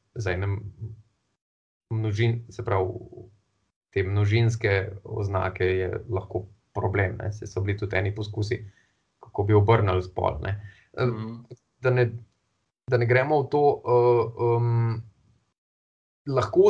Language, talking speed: English, 95 wpm